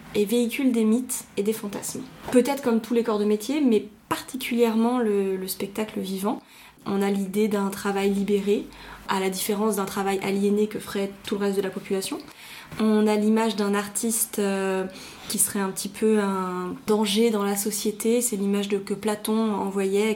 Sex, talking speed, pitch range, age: female, 180 wpm, 205-235 Hz, 20-39